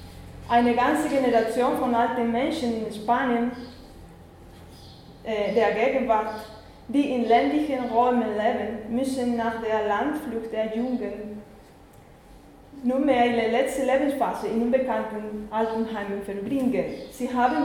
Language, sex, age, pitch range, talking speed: German, female, 20-39, 220-255 Hz, 110 wpm